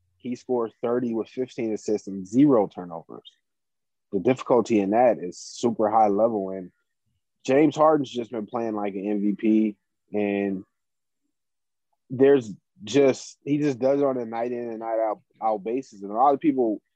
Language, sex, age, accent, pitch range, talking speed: English, male, 20-39, American, 105-125 Hz, 165 wpm